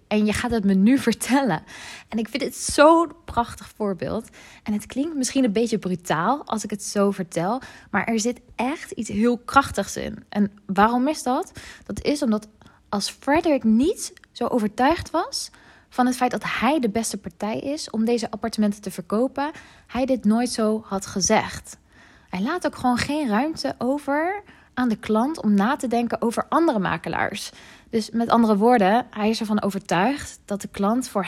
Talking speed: 185 wpm